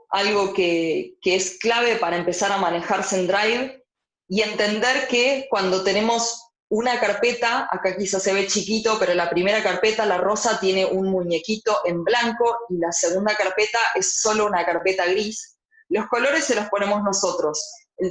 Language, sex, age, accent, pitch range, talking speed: Spanish, female, 20-39, Argentinian, 185-235 Hz, 165 wpm